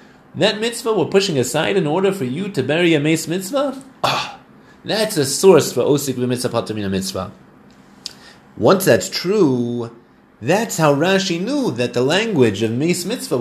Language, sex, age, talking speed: English, male, 30-49, 155 wpm